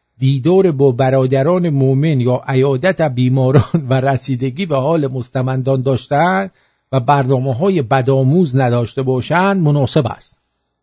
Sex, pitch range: male, 130-195 Hz